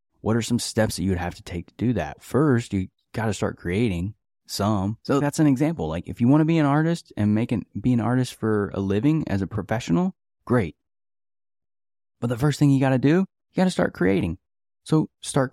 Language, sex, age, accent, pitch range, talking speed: English, male, 20-39, American, 95-125 Hz, 230 wpm